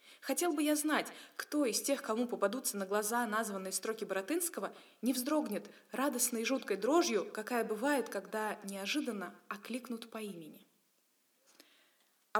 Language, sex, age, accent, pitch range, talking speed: Russian, female, 20-39, native, 210-275 Hz, 135 wpm